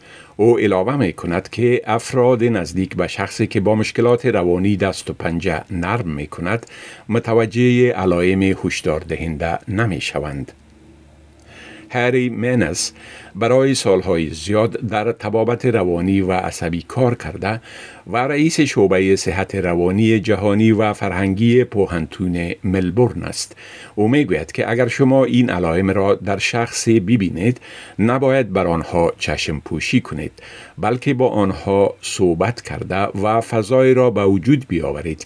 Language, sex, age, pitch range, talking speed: Persian, male, 50-69, 95-120 Hz, 130 wpm